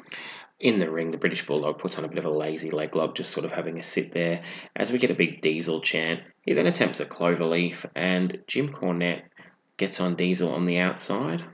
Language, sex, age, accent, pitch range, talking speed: English, male, 20-39, Australian, 85-95 Hz, 230 wpm